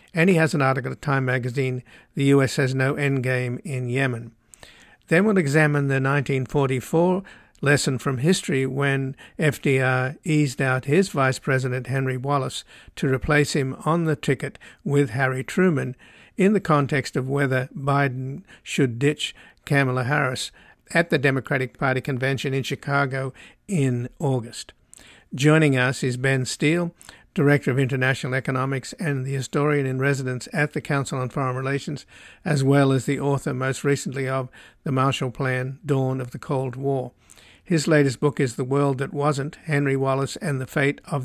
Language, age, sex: English, 60-79, male